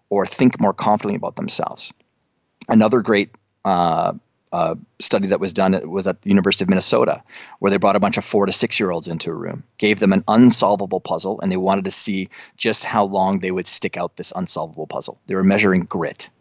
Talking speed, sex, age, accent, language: 210 wpm, male, 30-49, American, English